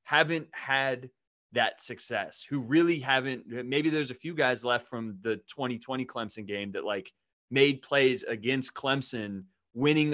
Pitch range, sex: 110-135 Hz, male